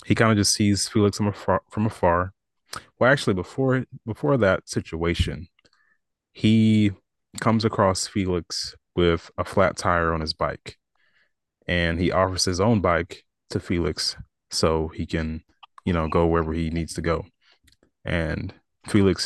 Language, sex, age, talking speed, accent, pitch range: English, male, 30-49, 150 wpm, American, 85-110 Hz